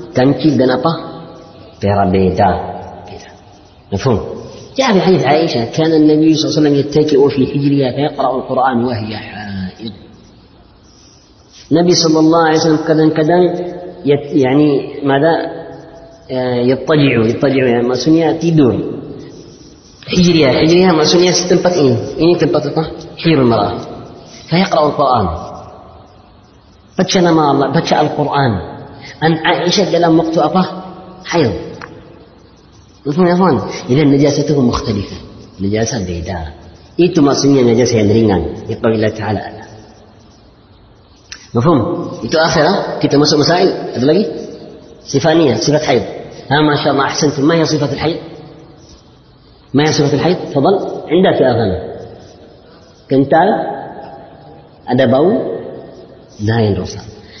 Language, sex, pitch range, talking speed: Indonesian, female, 110-160 Hz, 60 wpm